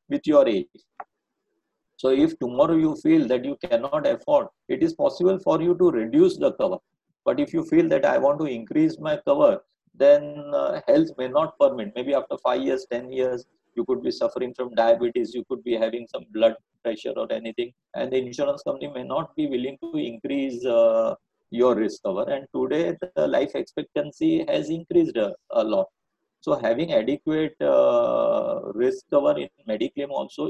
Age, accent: 50-69, Indian